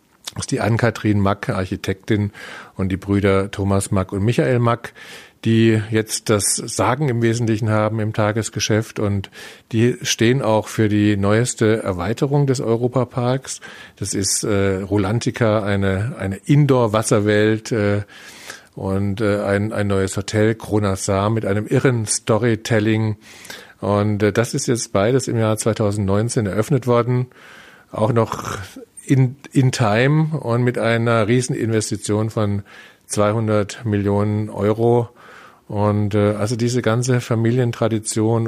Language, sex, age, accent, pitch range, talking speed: German, male, 40-59, German, 105-120 Hz, 130 wpm